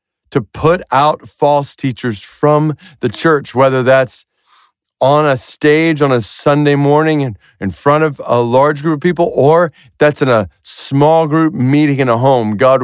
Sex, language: male, English